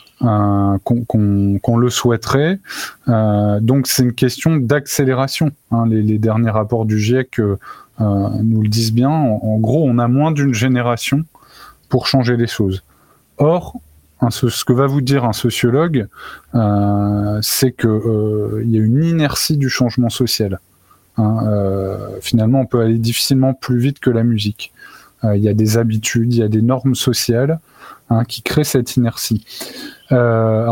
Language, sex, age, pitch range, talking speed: French, male, 20-39, 110-130 Hz, 160 wpm